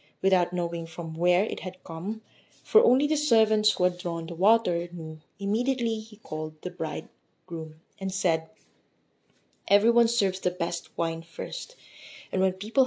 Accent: Filipino